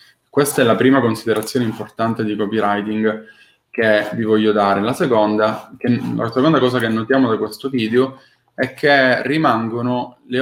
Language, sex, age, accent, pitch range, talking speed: Italian, male, 20-39, native, 110-130 Hz, 155 wpm